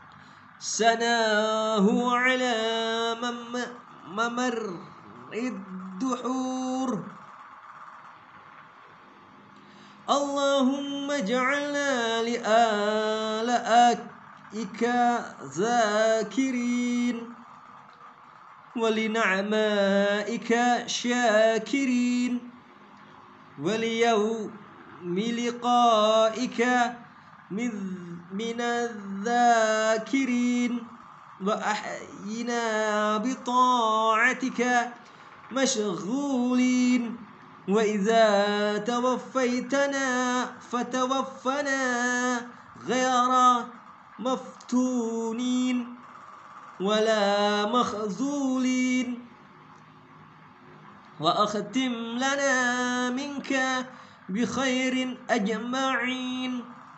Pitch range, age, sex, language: 220-255 Hz, 20-39, male, Indonesian